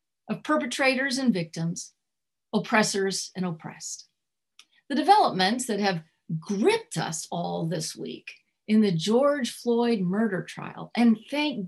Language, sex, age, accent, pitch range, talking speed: English, female, 40-59, American, 190-270 Hz, 125 wpm